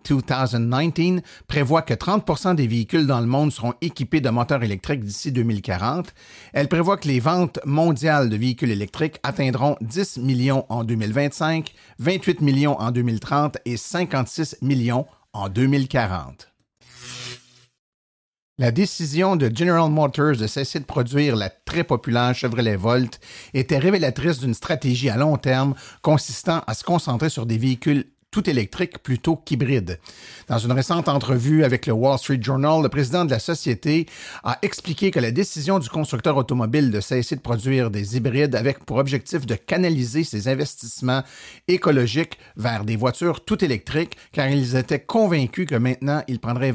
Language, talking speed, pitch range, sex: French, 155 wpm, 120-155 Hz, male